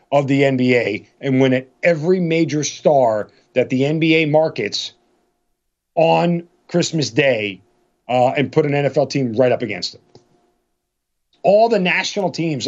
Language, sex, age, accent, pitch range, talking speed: English, male, 40-59, American, 130-165 Hz, 140 wpm